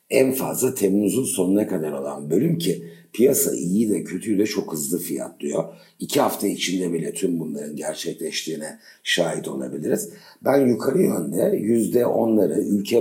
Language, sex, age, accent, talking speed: Turkish, male, 60-79, native, 140 wpm